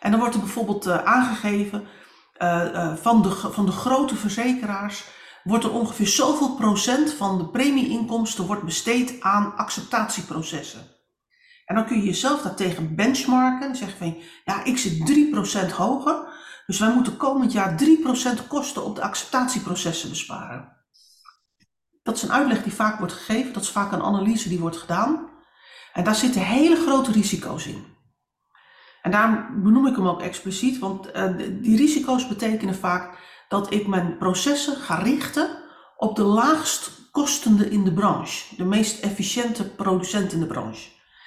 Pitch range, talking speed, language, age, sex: 195-255 Hz, 150 wpm, Dutch, 40-59, female